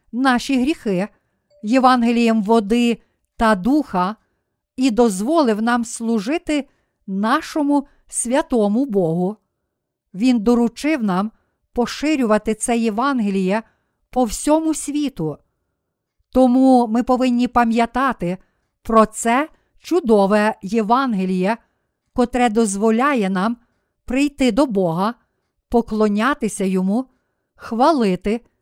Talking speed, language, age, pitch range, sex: 80 wpm, Ukrainian, 50-69, 210-265 Hz, female